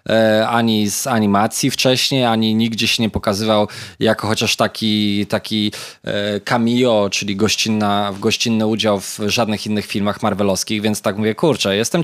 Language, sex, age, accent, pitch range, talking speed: Polish, male, 20-39, native, 110-125 Hz, 140 wpm